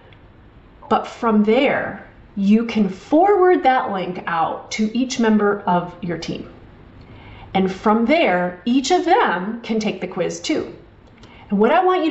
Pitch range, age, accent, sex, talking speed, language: 190-260 Hz, 30-49, American, female, 155 wpm, English